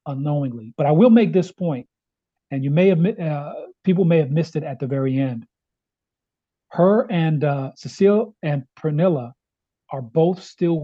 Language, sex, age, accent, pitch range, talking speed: English, male, 40-59, American, 140-180 Hz, 165 wpm